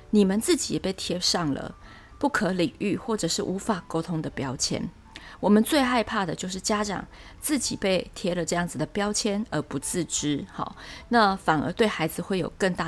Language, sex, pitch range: Chinese, female, 175-230 Hz